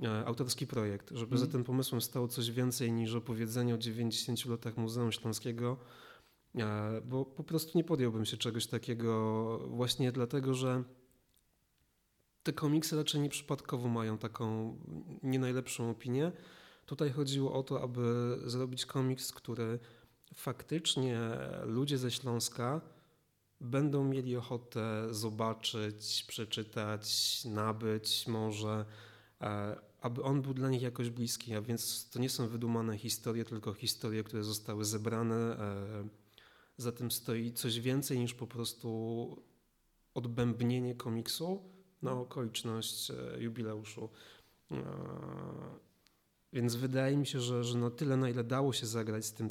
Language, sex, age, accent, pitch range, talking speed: Polish, male, 30-49, native, 110-130 Hz, 125 wpm